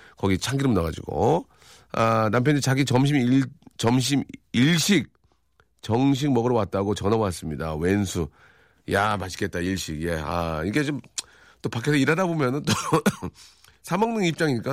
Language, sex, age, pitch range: Korean, male, 40-59, 100-145 Hz